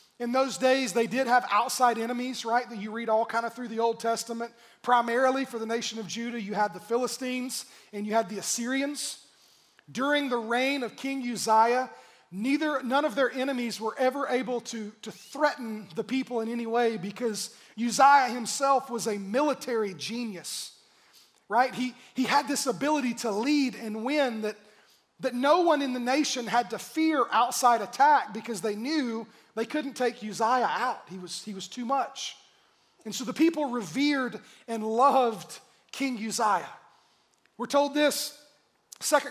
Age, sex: 30-49, male